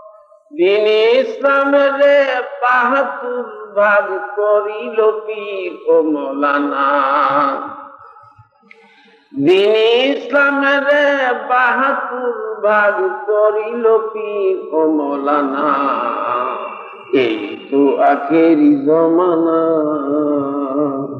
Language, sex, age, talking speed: Bengali, male, 50-69, 35 wpm